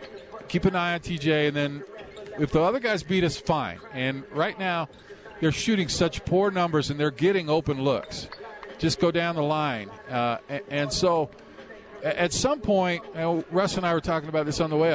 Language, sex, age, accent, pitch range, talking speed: English, male, 50-69, American, 145-185 Hz, 205 wpm